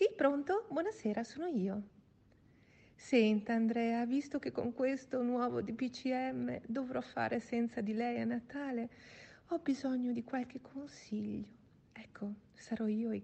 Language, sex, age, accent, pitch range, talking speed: Italian, female, 50-69, native, 200-255 Hz, 130 wpm